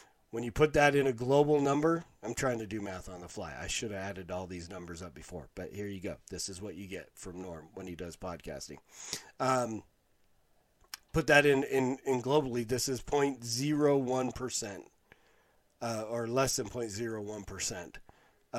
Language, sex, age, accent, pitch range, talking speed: English, male, 40-59, American, 100-135 Hz, 180 wpm